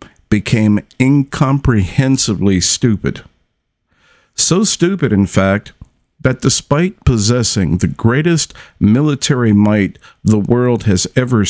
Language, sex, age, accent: English, male, 50-69, American